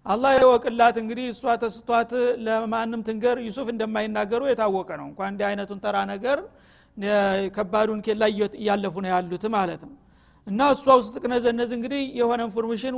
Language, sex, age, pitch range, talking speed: Amharic, male, 50-69, 205-245 Hz, 135 wpm